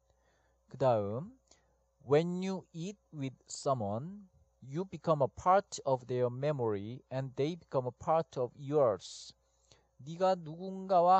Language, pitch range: Korean, 105-165 Hz